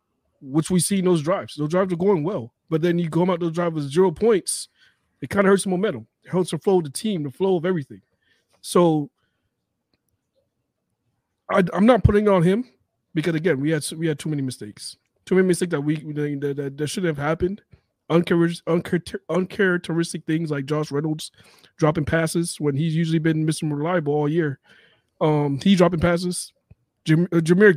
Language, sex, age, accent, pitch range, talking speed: English, male, 30-49, American, 155-190 Hz, 190 wpm